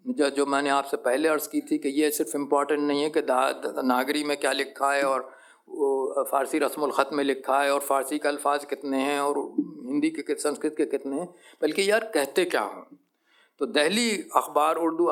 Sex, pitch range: male, 135-175 Hz